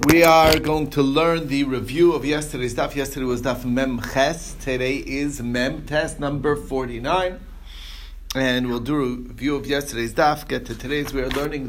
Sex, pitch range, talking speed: male, 115-140 Hz, 180 wpm